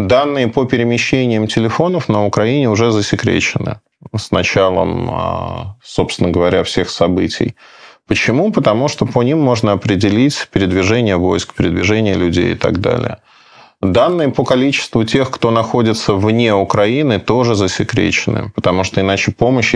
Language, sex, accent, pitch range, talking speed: Russian, male, native, 95-120 Hz, 130 wpm